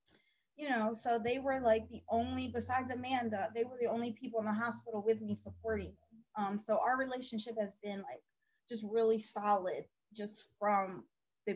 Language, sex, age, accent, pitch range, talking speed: English, female, 20-39, American, 195-225 Hz, 180 wpm